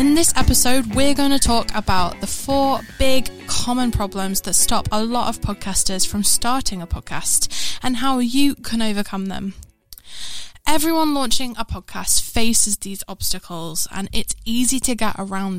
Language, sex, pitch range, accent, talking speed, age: English, female, 200-265 Hz, British, 160 wpm, 10-29